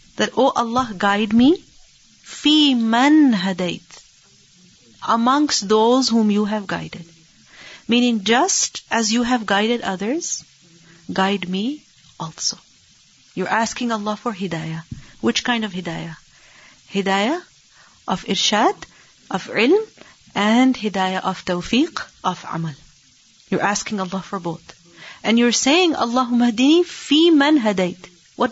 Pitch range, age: 195-260 Hz, 40-59